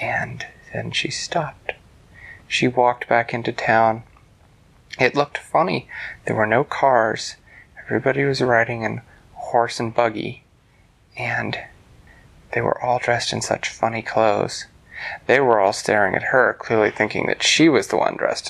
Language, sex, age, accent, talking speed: English, male, 30-49, American, 150 wpm